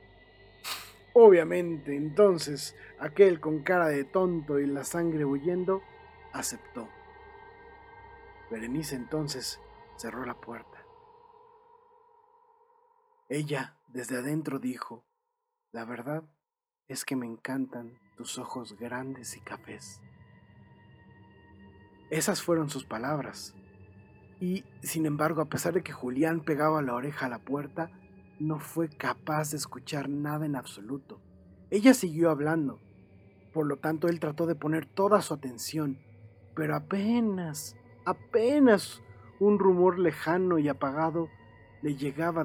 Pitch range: 120-170 Hz